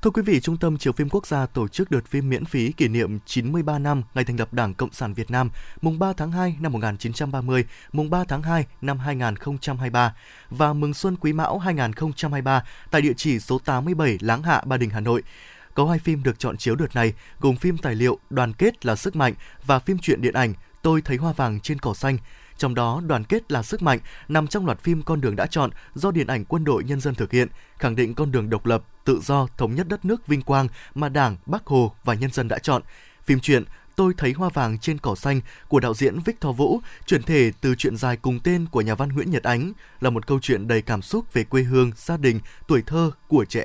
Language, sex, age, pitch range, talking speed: Vietnamese, male, 20-39, 120-155 Hz, 240 wpm